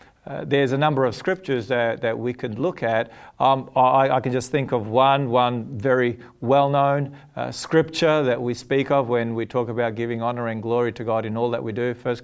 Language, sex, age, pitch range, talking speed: English, male, 40-59, 125-160 Hz, 220 wpm